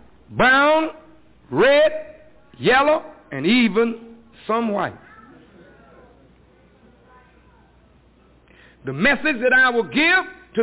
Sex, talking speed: male, 80 wpm